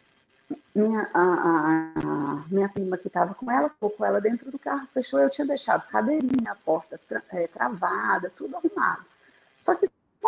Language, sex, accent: Portuguese, female, Brazilian